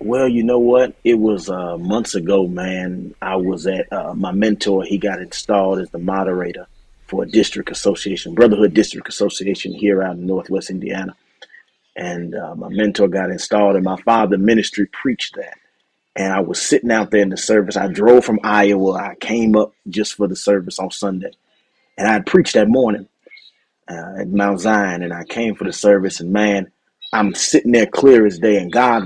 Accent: American